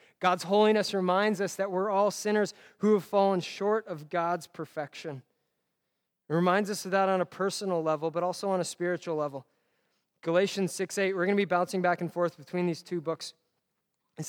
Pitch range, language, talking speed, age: 175-210 Hz, English, 190 wpm, 20-39